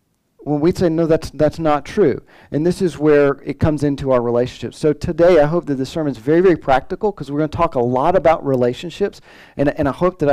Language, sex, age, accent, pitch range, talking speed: English, male, 40-59, American, 130-165 Hz, 245 wpm